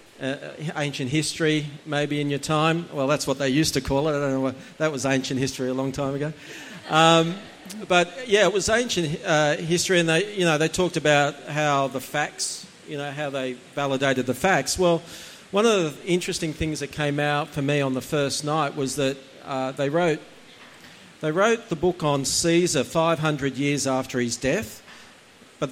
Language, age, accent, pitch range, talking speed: English, 40-59, Australian, 135-160 Hz, 205 wpm